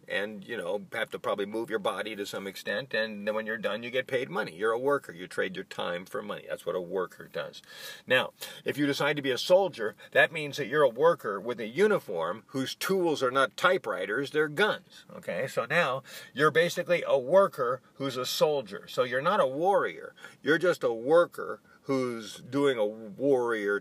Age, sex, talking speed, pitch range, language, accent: 50-69, male, 205 wpm, 110-180 Hz, English, American